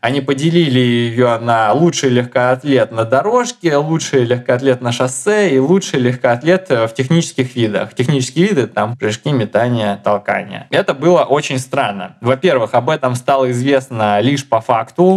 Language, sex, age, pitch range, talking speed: Russian, male, 20-39, 120-140 Hz, 140 wpm